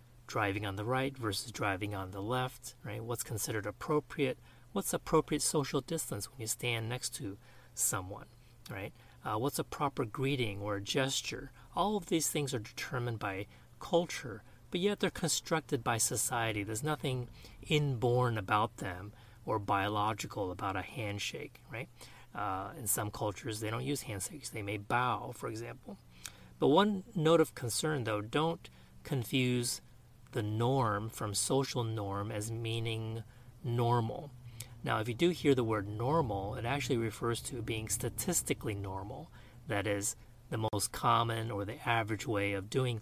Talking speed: 155 wpm